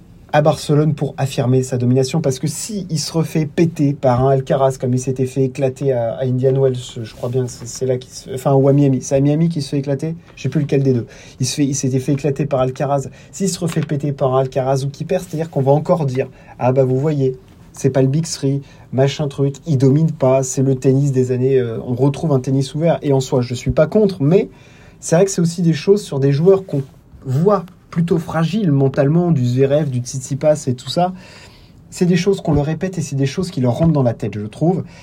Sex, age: male, 30-49